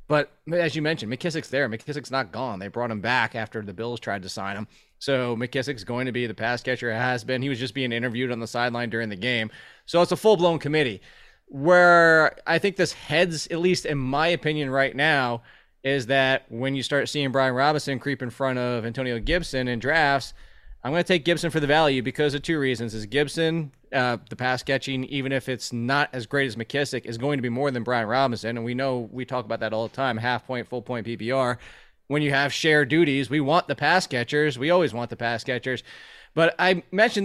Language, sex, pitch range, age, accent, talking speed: English, male, 125-165 Hz, 20-39, American, 230 wpm